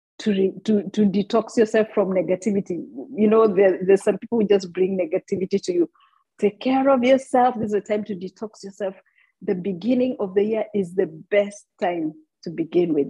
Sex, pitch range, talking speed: female, 180-225 Hz, 185 wpm